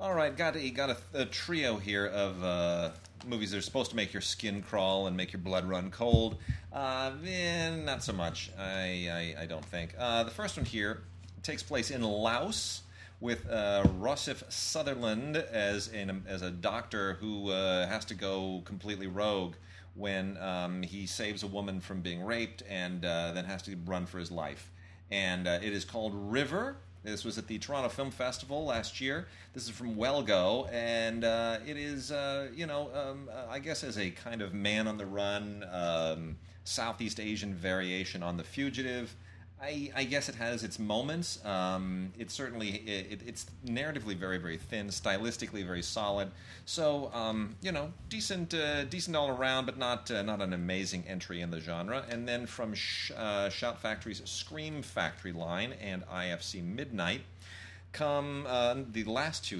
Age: 30-49